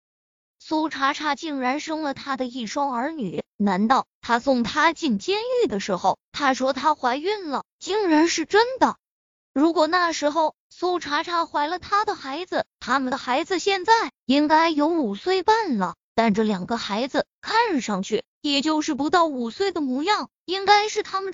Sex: female